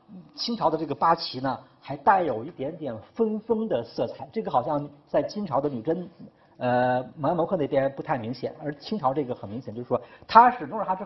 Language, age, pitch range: Chinese, 50-69, 125-185 Hz